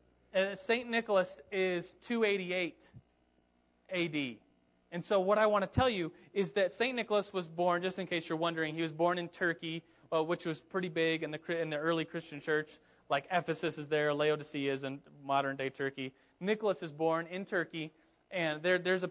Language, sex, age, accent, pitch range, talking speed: English, male, 30-49, American, 145-185 Hz, 180 wpm